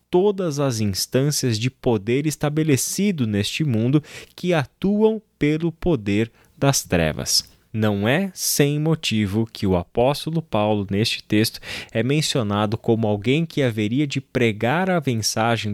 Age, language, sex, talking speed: 20-39, Portuguese, male, 130 wpm